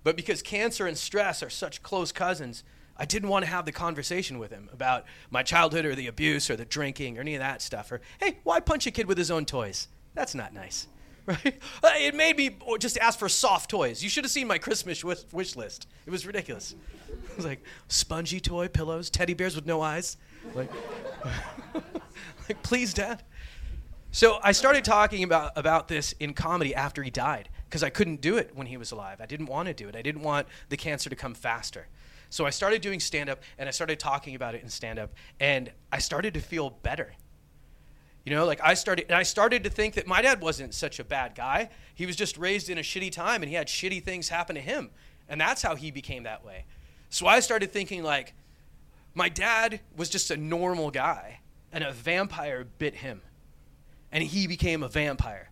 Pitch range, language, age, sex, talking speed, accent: 135-195 Hz, English, 30-49, male, 210 wpm, American